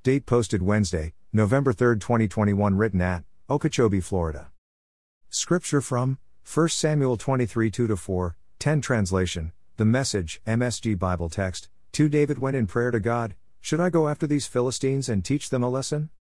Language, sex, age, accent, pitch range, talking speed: English, male, 50-69, American, 90-130 Hz, 145 wpm